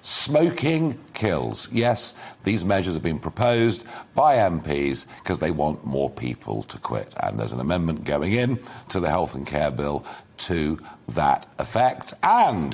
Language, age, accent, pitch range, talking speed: English, 50-69, British, 80-125 Hz, 155 wpm